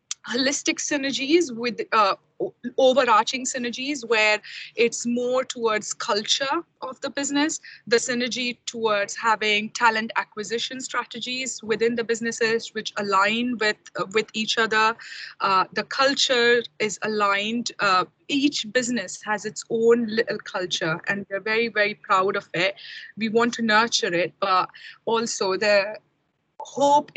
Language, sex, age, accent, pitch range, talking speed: English, female, 20-39, Indian, 195-240 Hz, 135 wpm